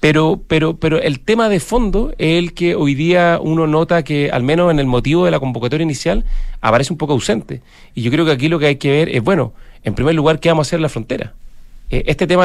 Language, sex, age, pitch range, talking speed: Spanish, male, 40-59, 125-160 Hz, 255 wpm